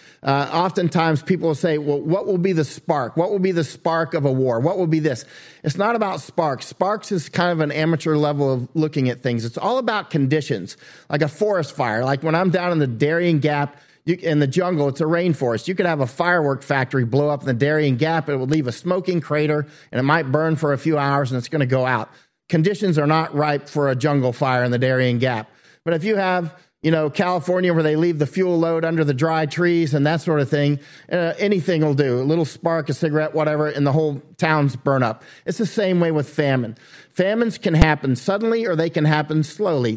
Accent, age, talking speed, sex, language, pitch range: American, 40-59, 240 wpm, male, English, 140-170 Hz